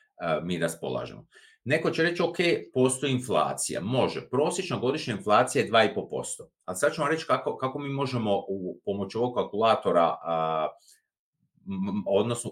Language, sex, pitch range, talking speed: Croatian, male, 120-185 Hz, 155 wpm